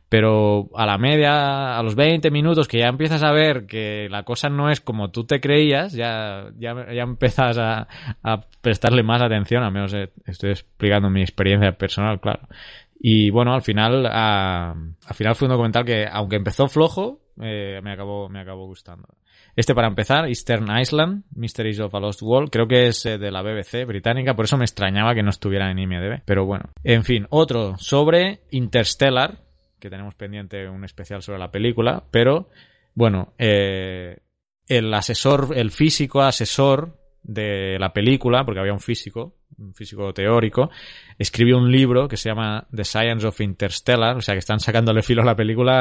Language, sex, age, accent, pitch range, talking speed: Spanish, male, 20-39, Spanish, 100-125 Hz, 180 wpm